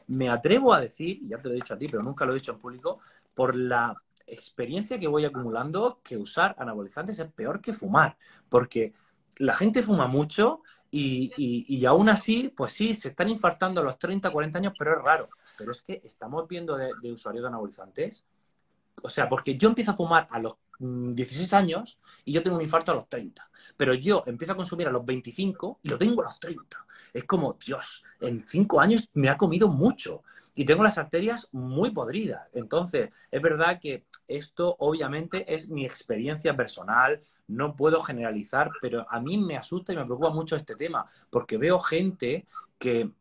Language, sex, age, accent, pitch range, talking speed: Spanish, male, 30-49, Spanish, 135-200 Hz, 195 wpm